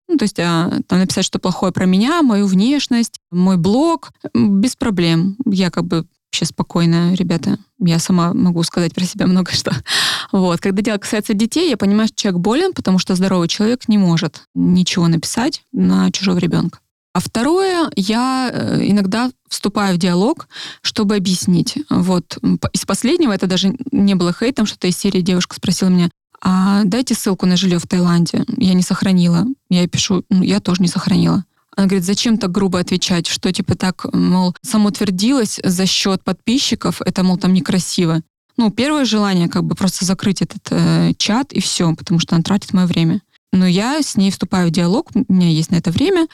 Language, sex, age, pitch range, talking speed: Russian, female, 20-39, 180-220 Hz, 185 wpm